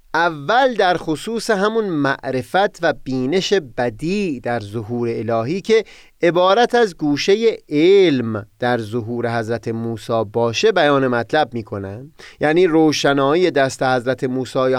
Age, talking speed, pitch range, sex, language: 30-49, 120 wpm, 125-185 Hz, male, Persian